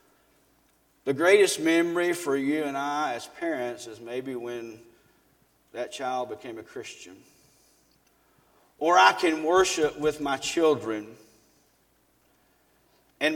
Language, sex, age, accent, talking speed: English, male, 50-69, American, 110 wpm